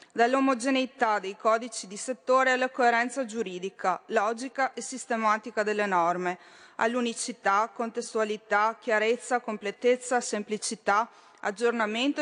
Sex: female